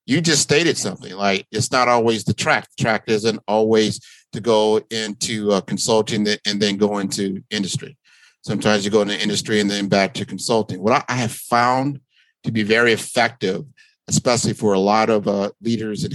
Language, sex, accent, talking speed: English, male, American, 185 wpm